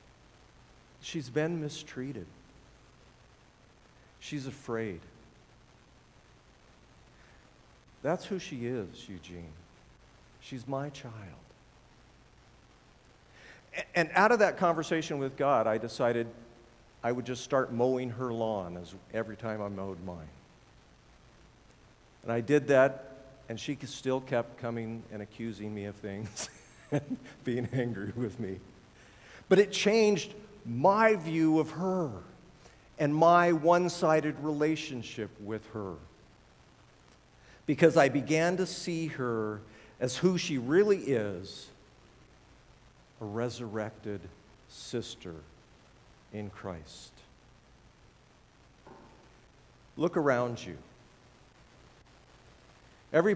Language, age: English, 50-69